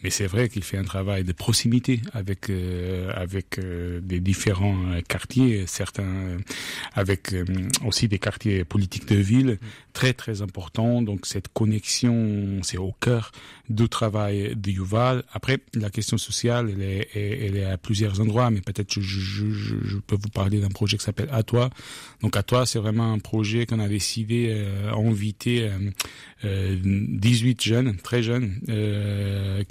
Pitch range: 100-115 Hz